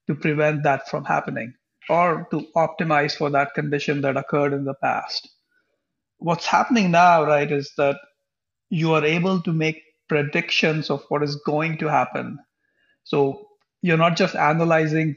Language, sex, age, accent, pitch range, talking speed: English, male, 50-69, Indian, 145-170 Hz, 155 wpm